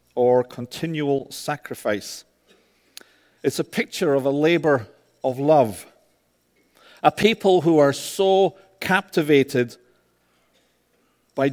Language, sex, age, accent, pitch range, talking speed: English, male, 50-69, British, 125-165 Hz, 95 wpm